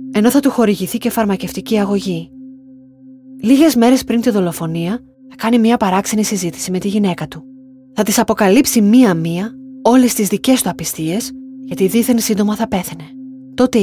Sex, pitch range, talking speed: female, 185-245 Hz, 155 wpm